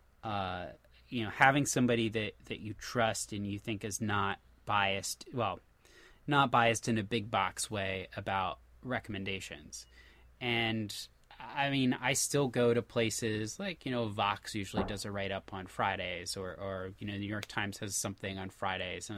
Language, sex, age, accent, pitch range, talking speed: English, male, 20-39, American, 105-130 Hz, 175 wpm